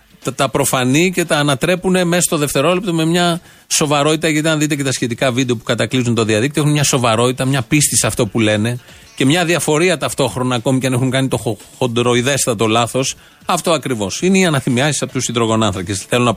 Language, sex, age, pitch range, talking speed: Greek, male, 40-59, 125-155 Hz, 195 wpm